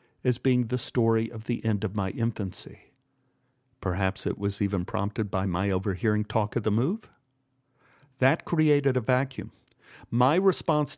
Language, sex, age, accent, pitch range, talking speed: English, male, 50-69, American, 115-135 Hz, 155 wpm